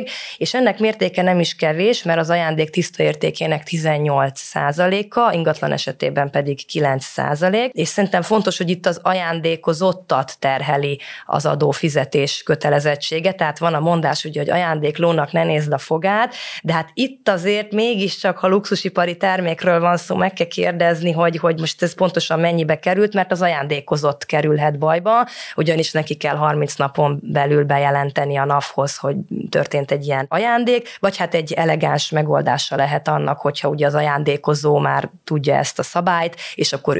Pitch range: 145-180 Hz